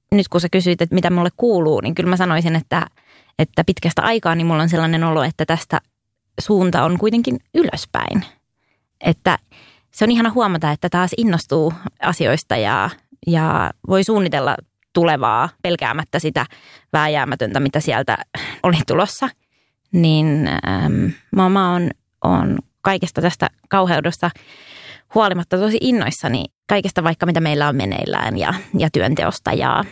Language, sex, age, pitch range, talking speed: English, female, 20-39, 155-205 Hz, 140 wpm